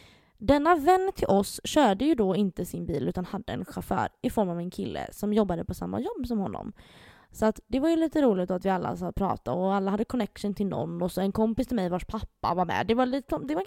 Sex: female